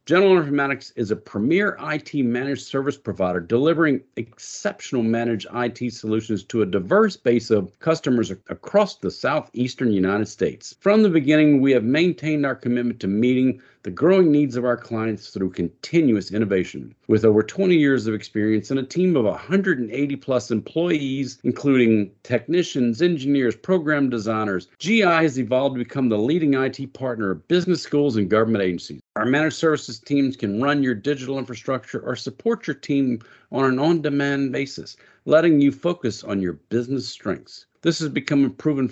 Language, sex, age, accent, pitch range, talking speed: English, male, 50-69, American, 115-155 Hz, 165 wpm